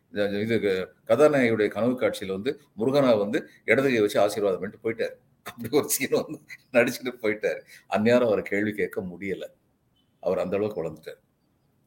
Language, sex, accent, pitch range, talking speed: Tamil, male, native, 100-145 Hz, 105 wpm